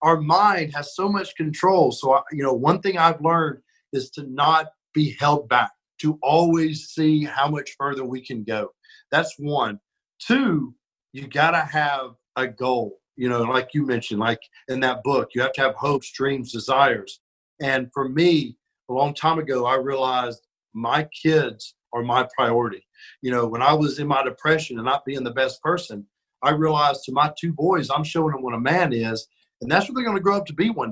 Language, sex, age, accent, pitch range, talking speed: English, male, 40-59, American, 135-180 Hz, 200 wpm